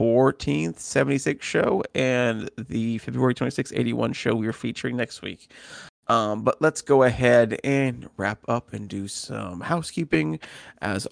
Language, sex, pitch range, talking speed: English, male, 105-130 Hz, 145 wpm